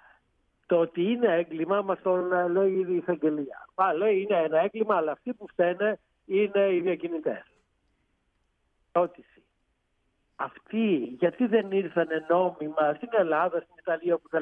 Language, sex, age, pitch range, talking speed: Greek, male, 60-79, 165-200 Hz, 135 wpm